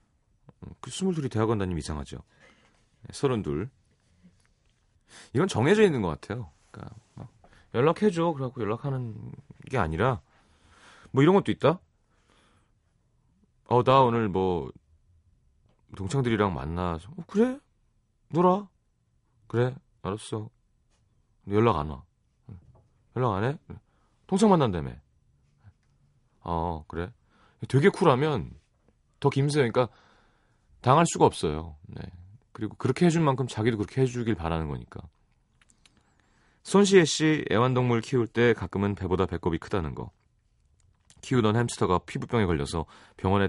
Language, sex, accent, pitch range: Korean, male, native, 90-135 Hz